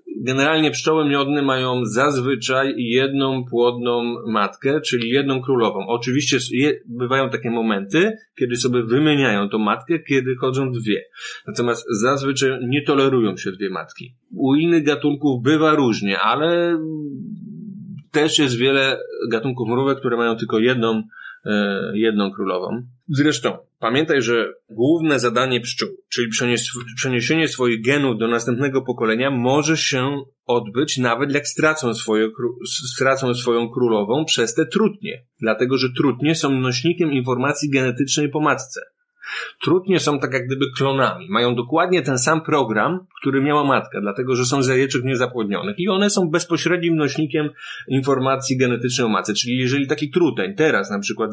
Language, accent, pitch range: Polish, native, 125-155 Hz